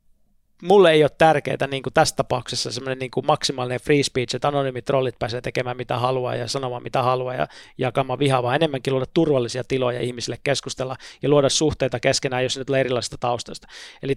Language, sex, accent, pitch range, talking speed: Finnish, male, native, 130-155 Hz, 180 wpm